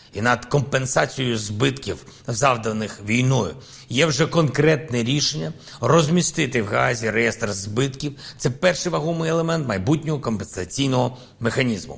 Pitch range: 120-145 Hz